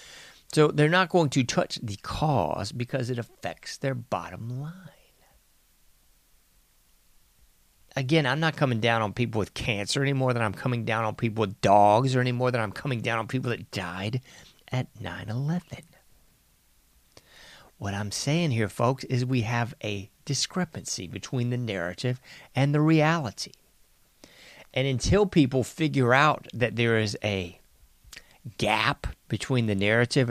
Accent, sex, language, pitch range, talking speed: American, male, English, 110-135 Hz, 150 wpm